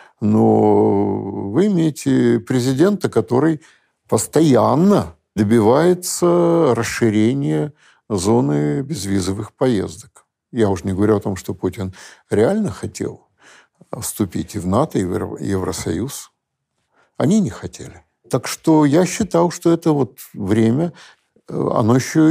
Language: Russian